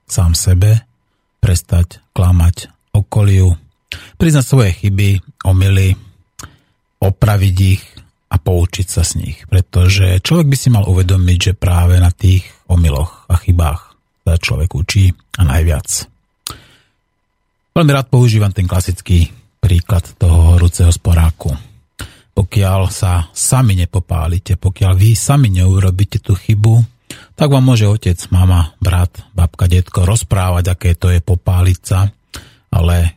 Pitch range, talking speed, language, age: 90-105 Hz, 120 wpm, Slovak, 40-59